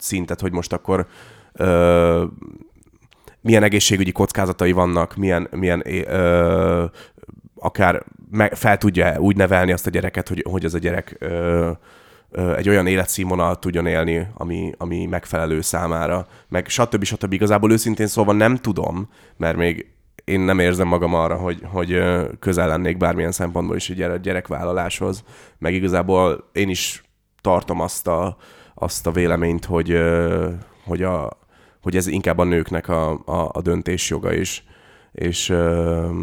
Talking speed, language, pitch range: 140 wpm, Hungarian, 85-95 Hz